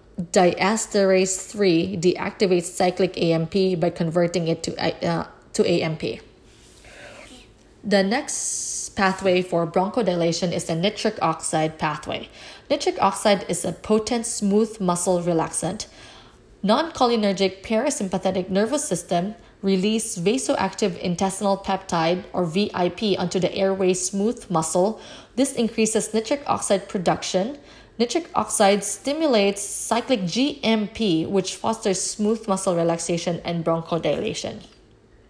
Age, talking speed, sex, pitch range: 20-39, 100 wpm, female, 180-220 Hz